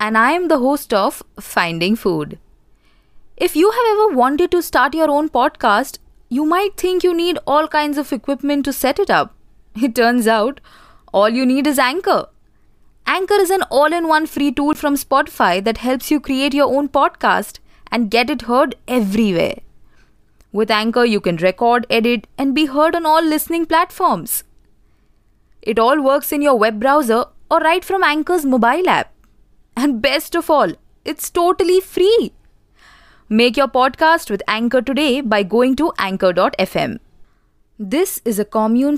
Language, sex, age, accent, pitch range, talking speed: English, female, 20-39, Indian, 210-305 Hz, 165 wpm